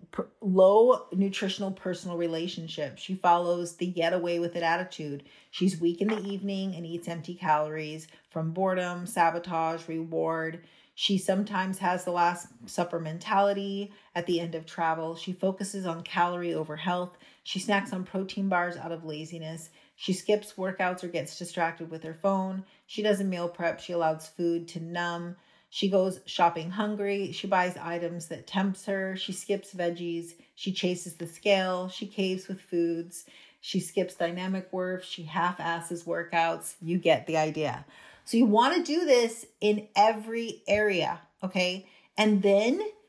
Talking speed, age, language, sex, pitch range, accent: 160 wpm, 30-49, English, female, 170-200 Hz, American